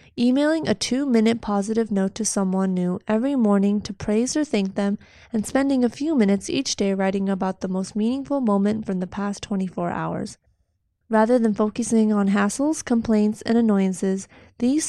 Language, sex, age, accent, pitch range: Chinese, female, 20-39, American, 195-235 Hz